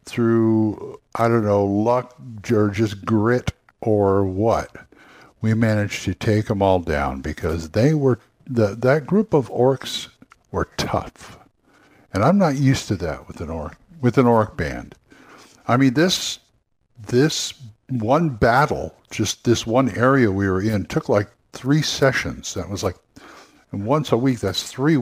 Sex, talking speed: male, 155 wpm